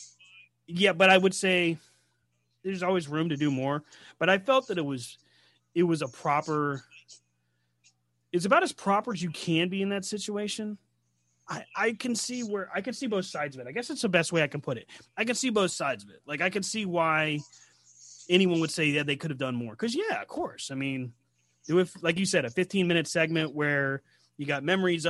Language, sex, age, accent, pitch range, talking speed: English, male, 30-49, American, 135-180 Hz, 220 wpm